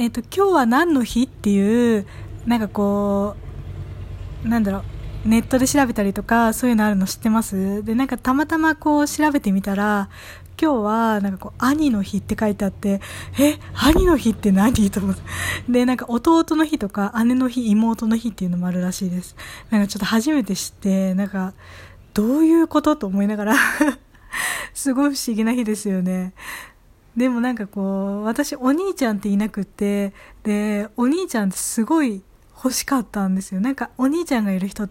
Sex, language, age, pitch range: female, Japanese, 20-39, 200-255 Hz